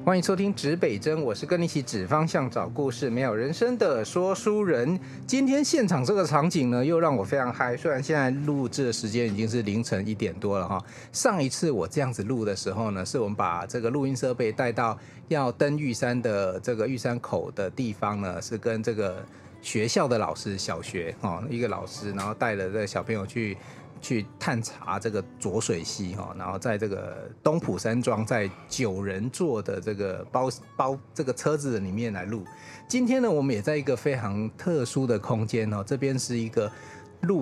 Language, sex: Chinese, male